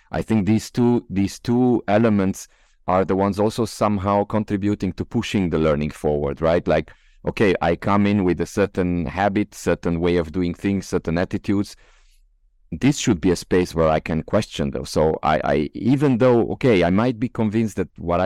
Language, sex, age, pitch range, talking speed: English, male, 40-59, 85-110 Hz, 185 wpm